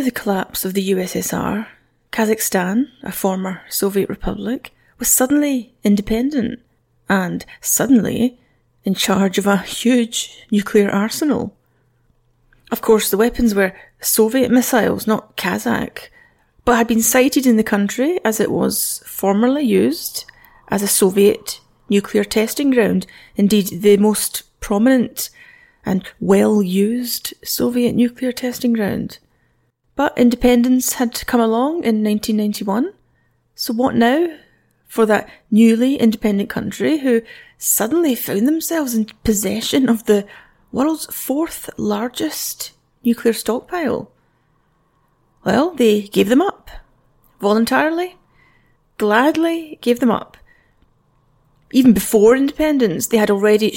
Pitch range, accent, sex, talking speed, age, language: 200-250 Hz, British, female, 115 wpm, 30-49, English